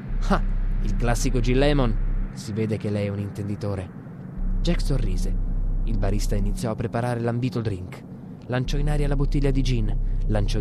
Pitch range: 100-130 Hz